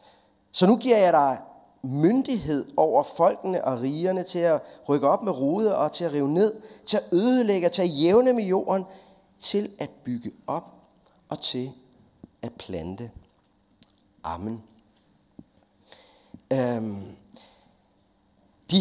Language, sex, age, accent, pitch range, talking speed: Danish, male, 30-49, native, 145-195 Hz, 130 wpm